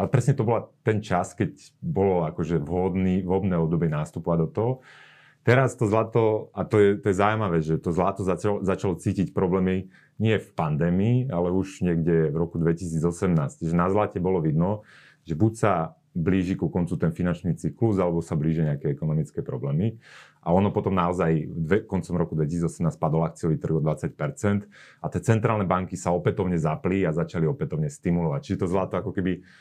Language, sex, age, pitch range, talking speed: Slovak, male, 30-49, 85-100 Hz, 175 wpm